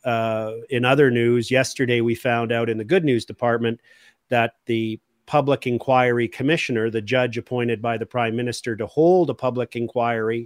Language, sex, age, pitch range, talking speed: English, male, 40-59, 115-130 Hz, 170 wpm